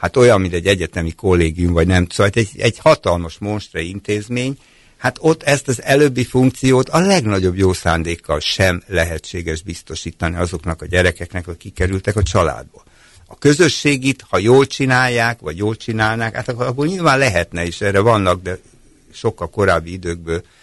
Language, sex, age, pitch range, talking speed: Hungarian, male, 60-79, 85-120 Hz, 150 wpm